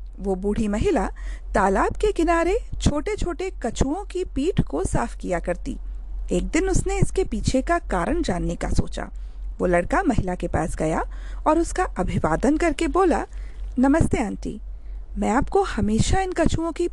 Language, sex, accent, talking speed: Hindi, female, native, 155 wpm